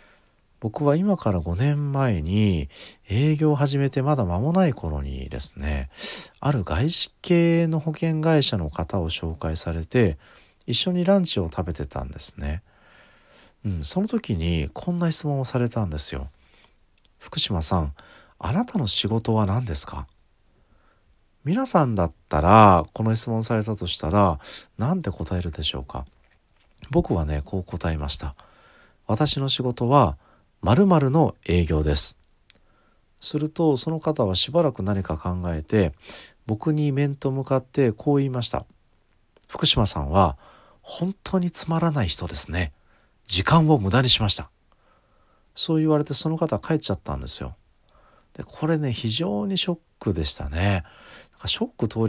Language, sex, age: Japanese, male, 40-59